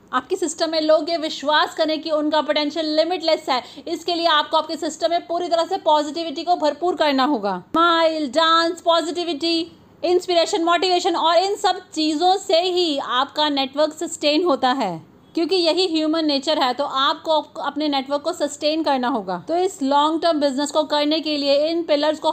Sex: female